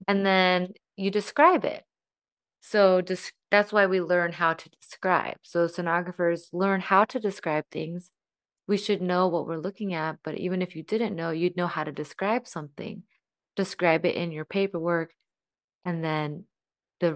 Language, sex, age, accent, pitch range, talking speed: English, female, 20-39, American, 170-200 Hz, 165 wpm